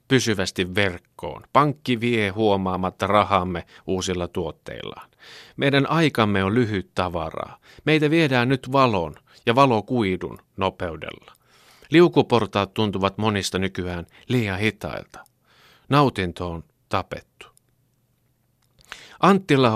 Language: Finnish